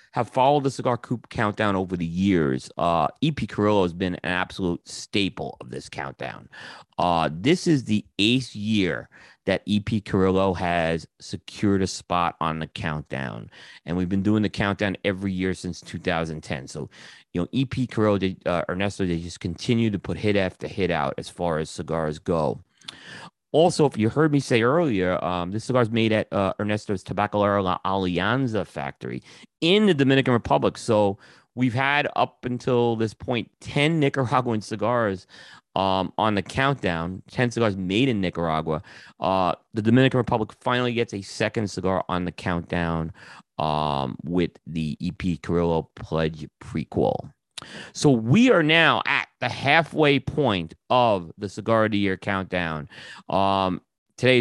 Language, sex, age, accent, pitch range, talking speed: English, male, 30-49, American, 90-125 Hz, 160 wpm